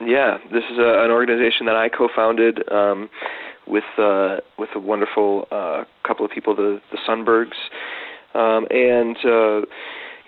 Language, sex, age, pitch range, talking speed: English, male, 30-49, 100-115 Hz, 145 wpm